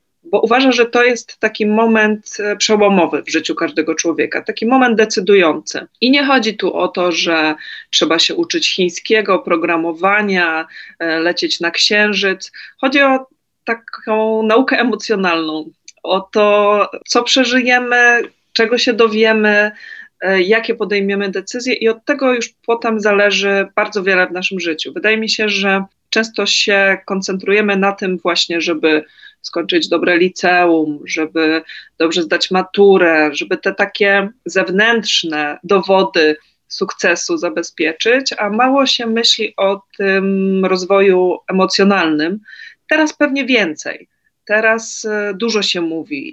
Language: Polish